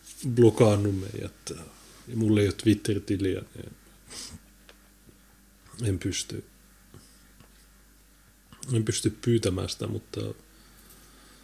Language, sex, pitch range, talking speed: Finnish, male, 95-115 Hz, 75 wpm